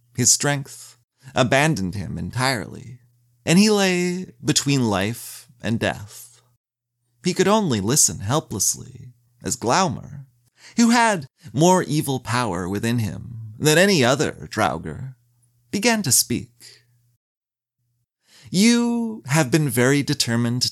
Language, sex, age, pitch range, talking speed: English, male, 30-49, 120-155 Hz, 110 wpm